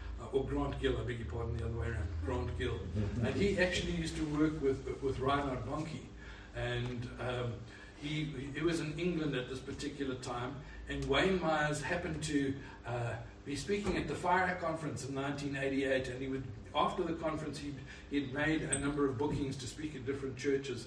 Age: 60-79